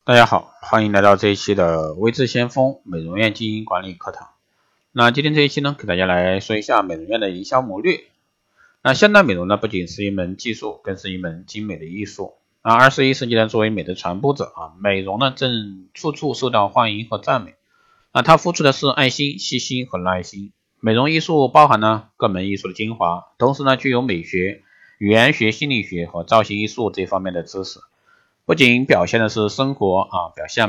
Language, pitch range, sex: Chinese, 95-130 Hz, male